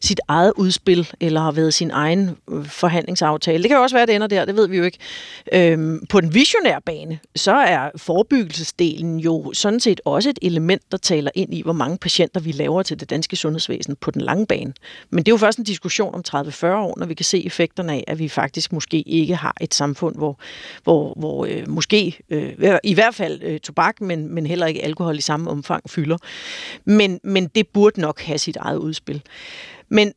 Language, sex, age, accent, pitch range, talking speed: Danish, female, 40-59, native, 160-200 Hz, 215 wpm